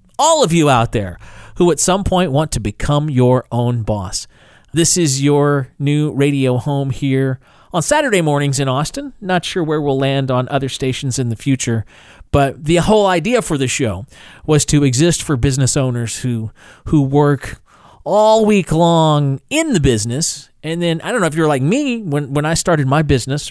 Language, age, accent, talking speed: English, 40-59, American, 190 wpm